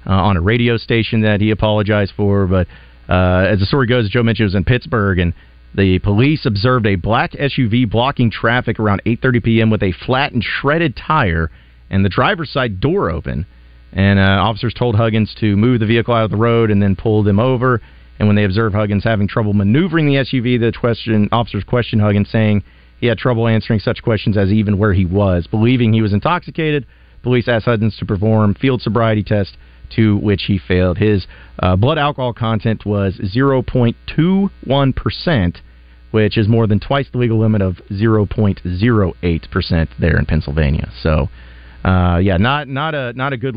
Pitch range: 95-120 Hz